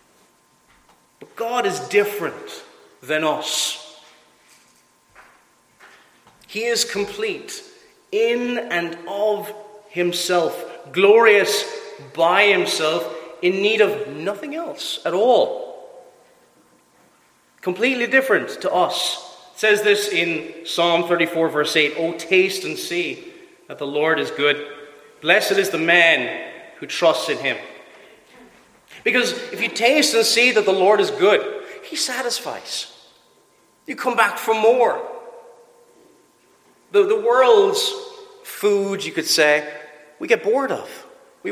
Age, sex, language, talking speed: 40-59, male, English, 120 wpm